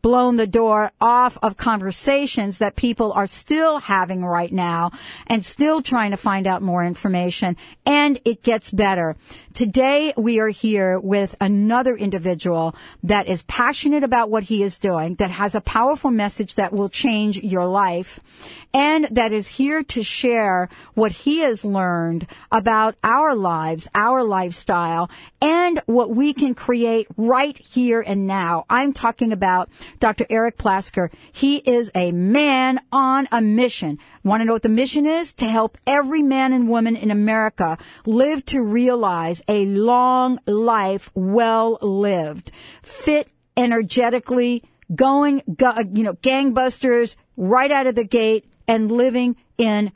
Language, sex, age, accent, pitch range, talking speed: English, female, 50-69, American, 195-250 Hz, 150 wpm